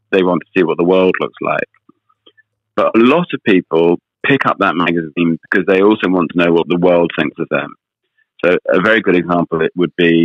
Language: English